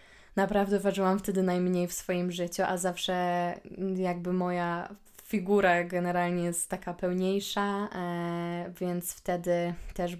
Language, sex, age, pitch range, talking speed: Polish, female, 20-39, 175-195 Hz, 110 wpm